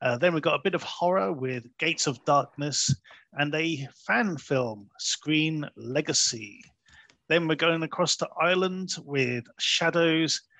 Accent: British